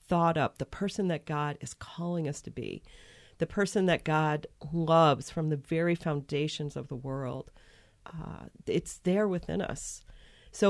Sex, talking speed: female, 165 wpm